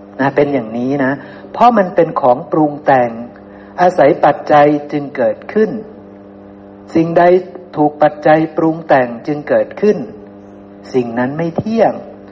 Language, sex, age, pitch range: Thai, male, 60-79, 110-155 Hz